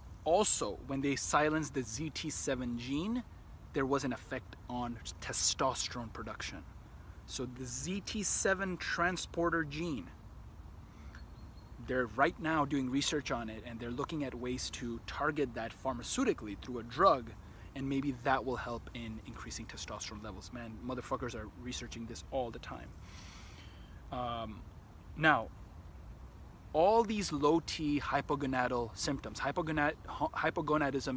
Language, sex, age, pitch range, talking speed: English, male, 30-49, 105-140 Hz, 120 wpm